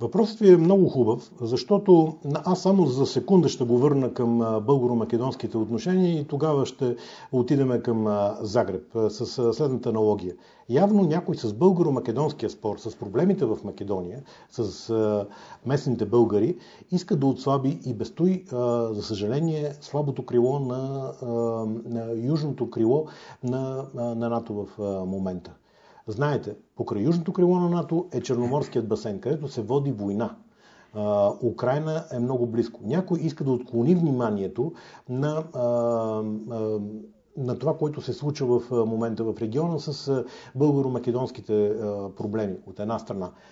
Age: 40-59